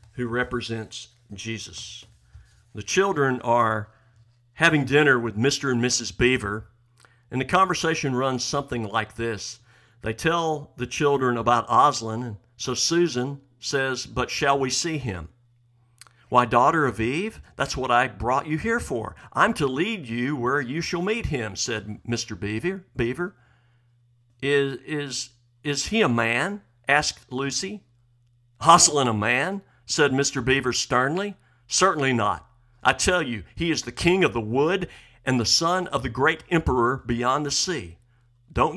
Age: 50-69